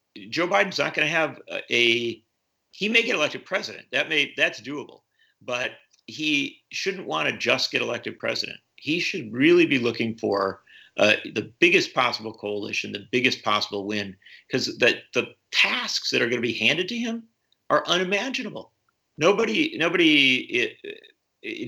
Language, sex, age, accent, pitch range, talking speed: English, male, 50-69, American, 110-180 Hz, 160 wpm